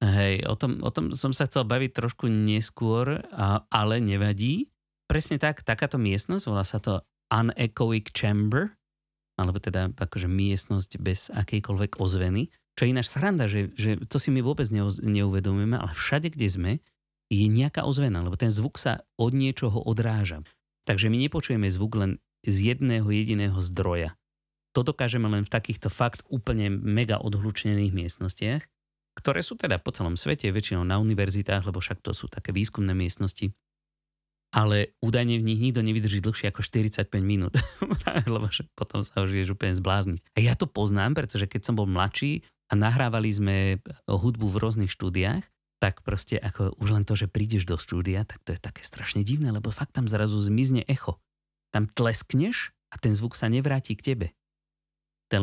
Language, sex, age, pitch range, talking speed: Slovak, male, 30-49, 100-120 Hz, 170 wpm